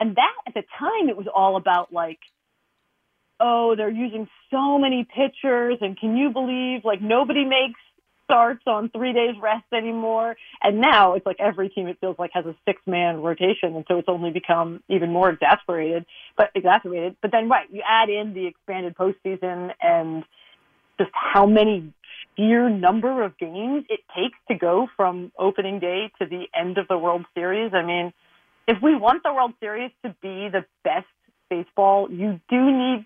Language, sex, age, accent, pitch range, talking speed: English, female, 40-59, American, 180-235 Hz, 180 wpm